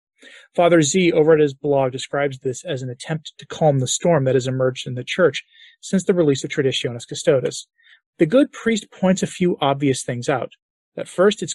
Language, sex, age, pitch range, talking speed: English, male, 30-49, 135-175 Hz, 205 wpm